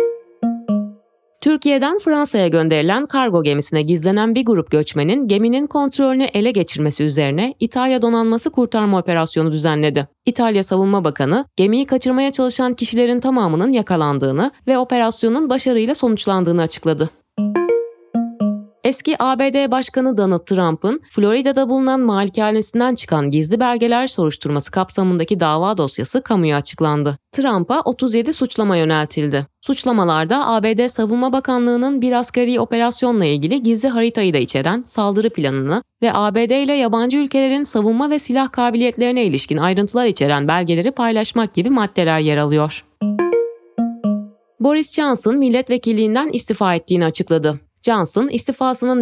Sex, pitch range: female, 170-255 Hz